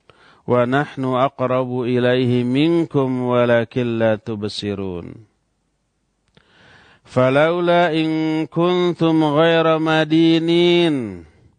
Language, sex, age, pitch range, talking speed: Indonesian, male, 50-69, 120-175 Hz, 60 wpm